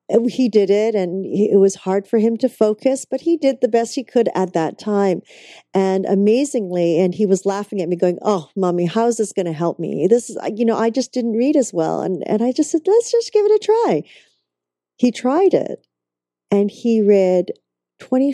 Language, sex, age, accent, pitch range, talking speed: English, female, 40-59, American, 180-240 Hz, 220 wpm